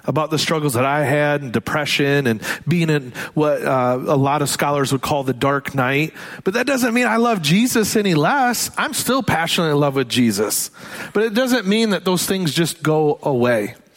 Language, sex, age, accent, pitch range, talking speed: English, male, 40-59, American, 150-195 Hz, 205 wpm